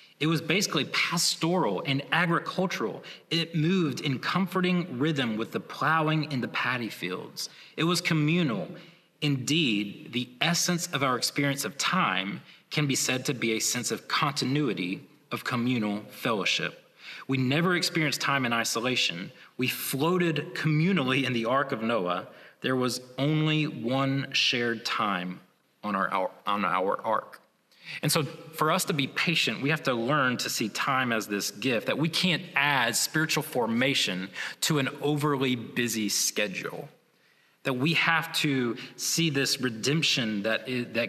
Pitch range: 120-155 Hz